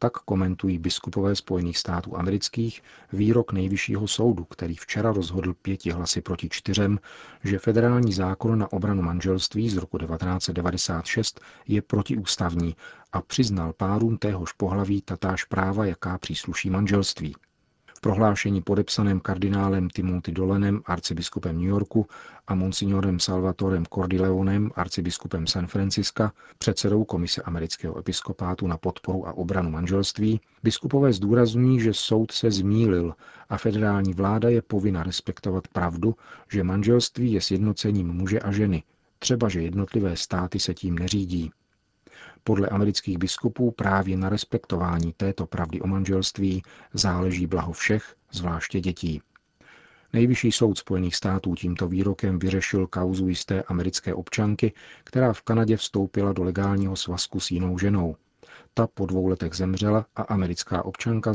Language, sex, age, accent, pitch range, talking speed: Czech, male, 40-59, native, 90-105 Hz, 130 wpm